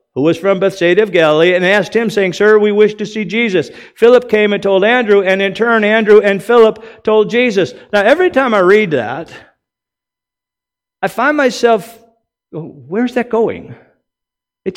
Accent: American